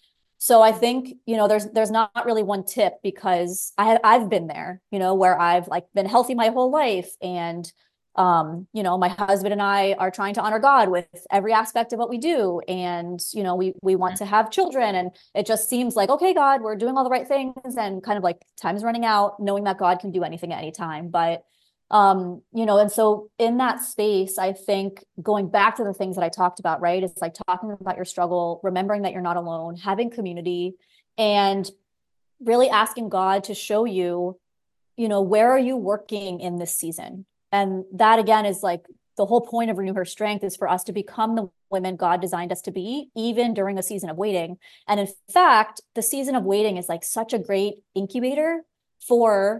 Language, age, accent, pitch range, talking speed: English, 30-49, American, 180-225 Hz, 220 wpm